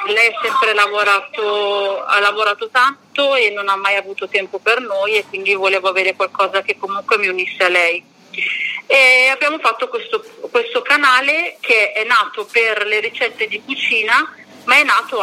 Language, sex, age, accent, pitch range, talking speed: Italian, female, 40-59, native, 205-275 Hz, 170 wpm